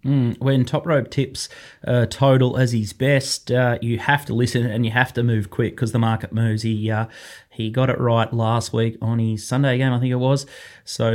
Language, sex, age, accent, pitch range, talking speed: English, male, 20-39, Australian, 115-135 Hz, 220 wpm